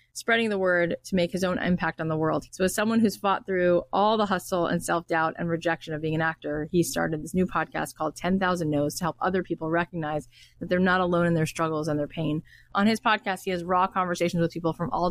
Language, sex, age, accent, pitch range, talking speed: English, female, 20-39, American, 165-200 Hz, 245 wpm